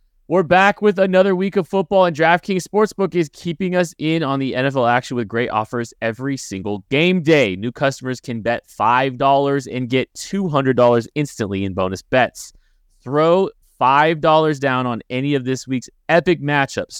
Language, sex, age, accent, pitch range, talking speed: English, male, 30-49, American, 105-140 Hz, 165 wpm